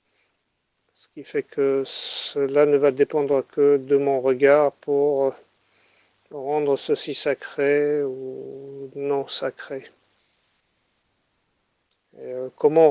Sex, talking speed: male, 95 wpm